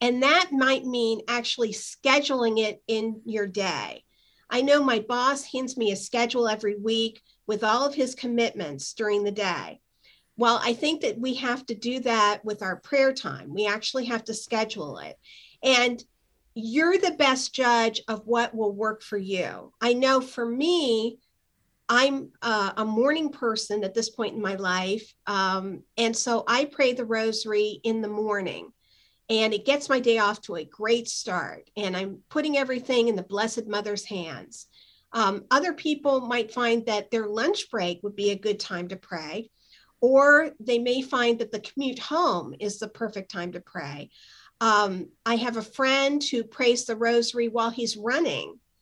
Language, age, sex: English, 50-69, female